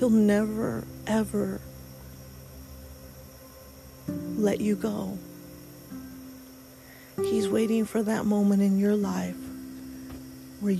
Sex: female